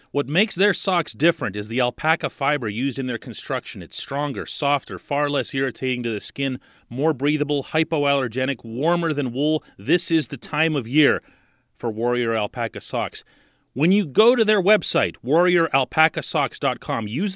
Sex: male